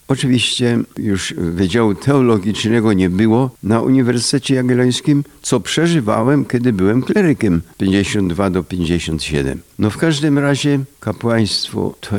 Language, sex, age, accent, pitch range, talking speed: Polish, male, 60-79, native, 100-135 Hz, 115 wpm